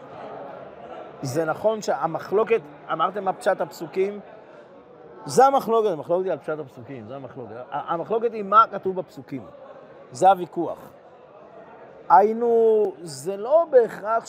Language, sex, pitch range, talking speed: Hebrew, male, 155-215 Hz, 110 wpm